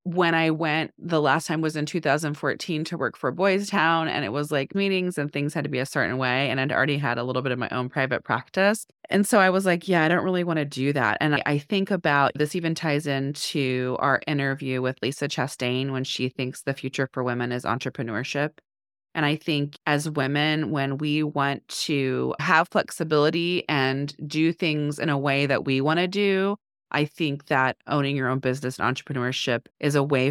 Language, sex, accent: English, female, American